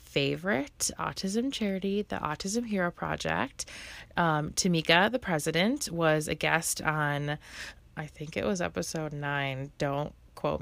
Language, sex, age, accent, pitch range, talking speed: English, female, 20-39, American, 145-185 Hz, 130 wpm